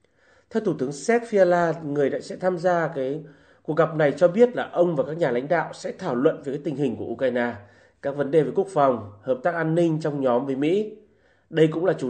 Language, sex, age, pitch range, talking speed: Vietnamese, male, 30-49, 140-185 Hz, 245 wpm